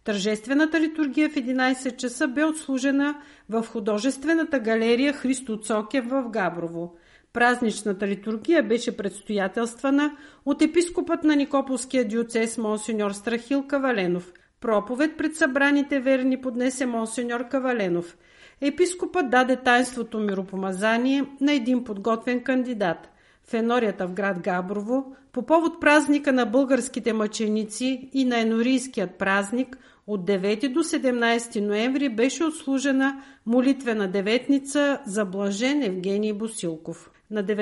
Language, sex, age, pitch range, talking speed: Bulgarian, female, 50-69, 215-280 Hz, 110 wpm